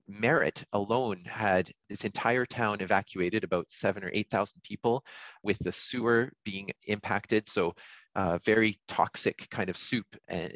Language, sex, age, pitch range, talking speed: English, male, 30-49, 95-115 Hz, 150 wpm